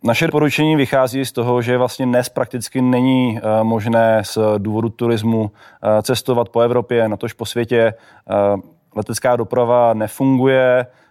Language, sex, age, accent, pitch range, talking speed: Czech, male, 20-39, native, 110-120 Hz, 130 wpm